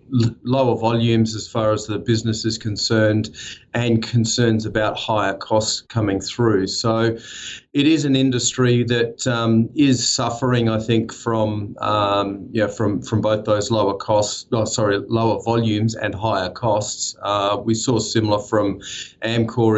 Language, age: English, 30-49